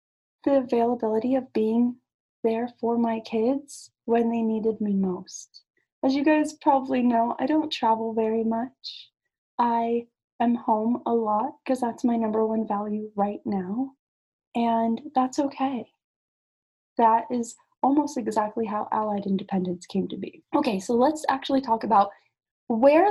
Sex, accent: female, American